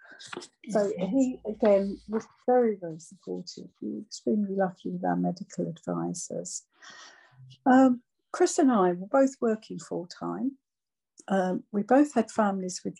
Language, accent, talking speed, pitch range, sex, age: English, British, 125 wpm, 185-230 Hz, female, 60-79